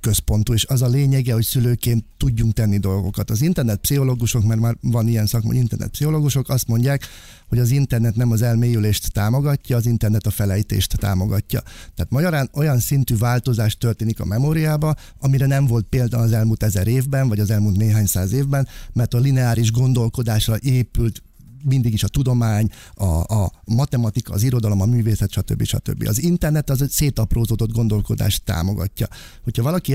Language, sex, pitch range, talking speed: Hungarian, male, 105-125 Hz, 170 wpm